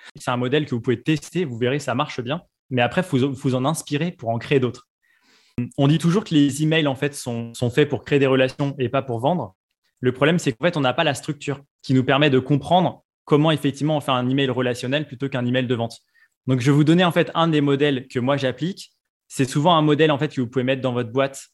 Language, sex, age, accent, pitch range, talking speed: French, male, 20-39, French, 125-155 Hz, 260 wpm